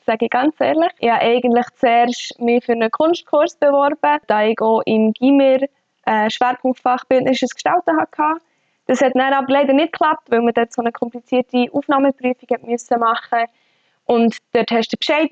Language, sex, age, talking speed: German, female, 20-39, 170 wpm